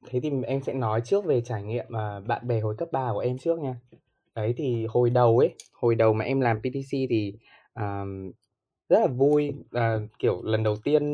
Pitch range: 120-150 Hz